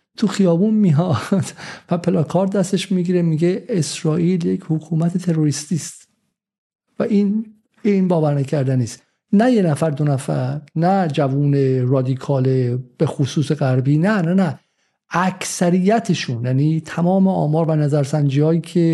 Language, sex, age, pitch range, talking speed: Persian, male, 50-69, 140-175 Hz, 125 wpm